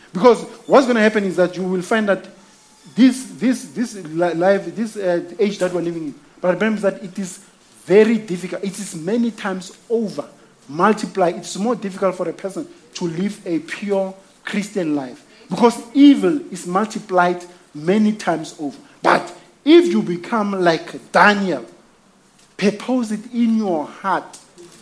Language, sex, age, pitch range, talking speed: English, male, 50-69, 180-230 Hz, 155 wpm